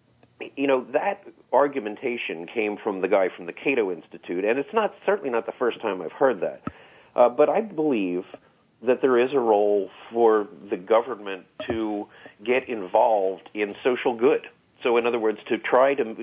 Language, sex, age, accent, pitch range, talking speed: English, male, 50-69, American, 105-170 Hz, 175 wpm